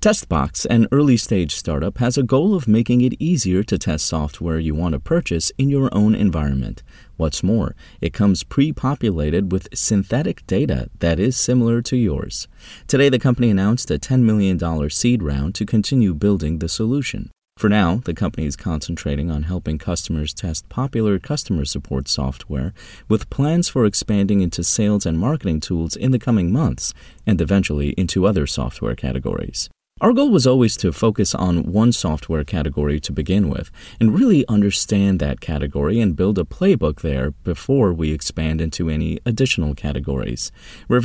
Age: 30-49